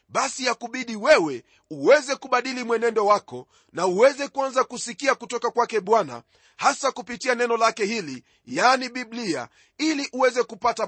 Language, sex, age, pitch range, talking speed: Swahili, male, 40-59, 210-270 Hz, 140 wpm